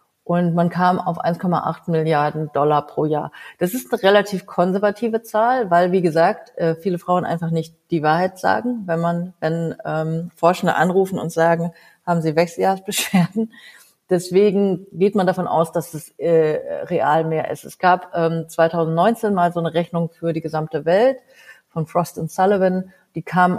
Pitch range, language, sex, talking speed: 170-210 Hz, German, female, 165 wpm